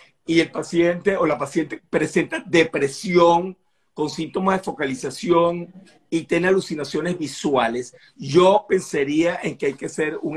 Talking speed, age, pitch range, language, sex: 140 wpm, 50-69, 155-195 Hz, Spanish, male